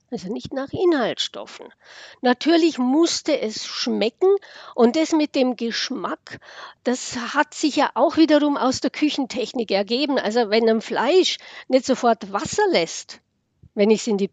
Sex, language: female, German